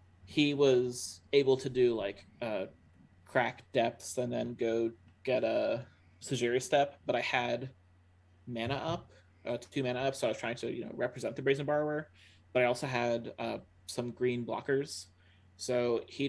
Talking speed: 170 wpm